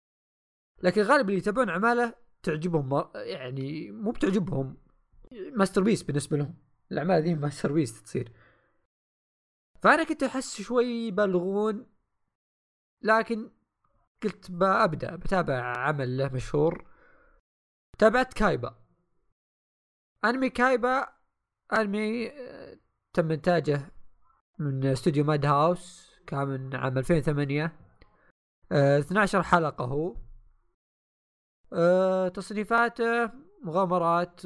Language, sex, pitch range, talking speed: Arabic, male, 140-210 Hz, 90 wpm